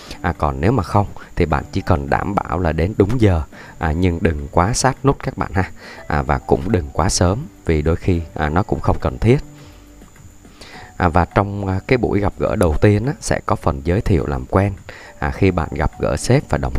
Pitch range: 75-100 Hz